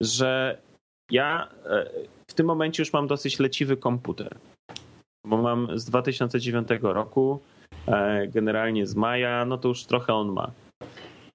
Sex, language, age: male, Polish, 30-49